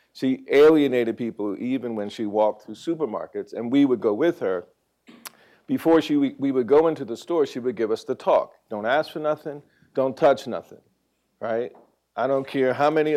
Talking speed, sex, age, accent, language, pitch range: 195 wpm, male, 50-69, American, English, 115-155 Hz